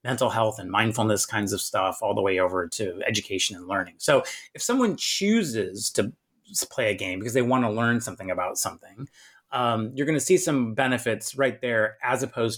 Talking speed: 200 wpm